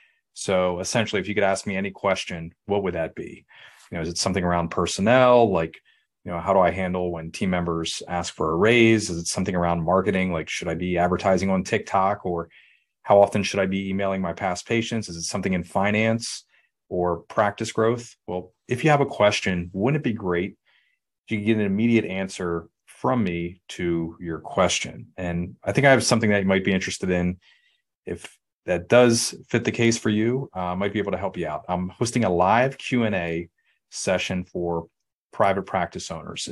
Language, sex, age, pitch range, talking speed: English, male, 30-49, 90-110 Hz, 200 wpm